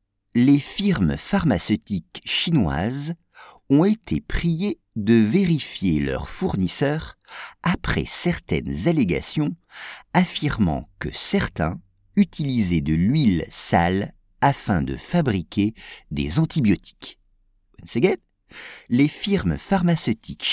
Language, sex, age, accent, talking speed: English, male, 50-69, French, 85 wpm